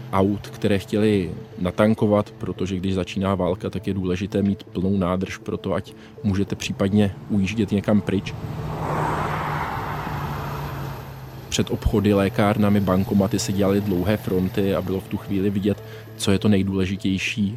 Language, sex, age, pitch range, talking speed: Czech, male, 20-39, 95-105 Hz, 135 wpm